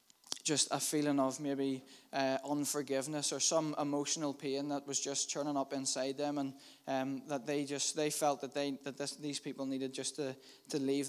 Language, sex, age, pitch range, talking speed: English, male, 20-39, 135-150 Hz, 195 wpm